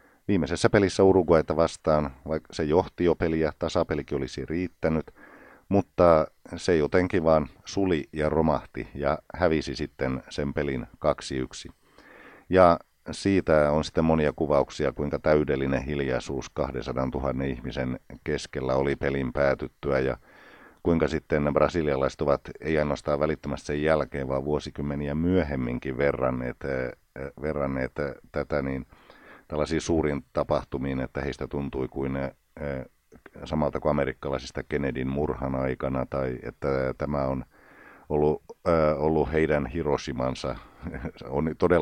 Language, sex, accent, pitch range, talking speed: Finnish, male, native, 70-80 Hz, 115 wpm